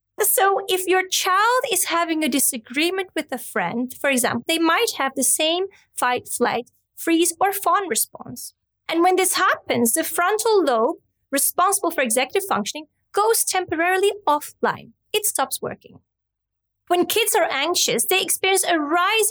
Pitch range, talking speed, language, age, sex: 260-370 Hz, 150 wpm, English, 20-39, female